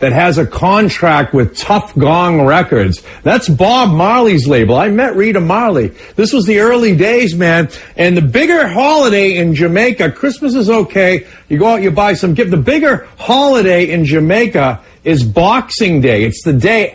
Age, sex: 50-69, male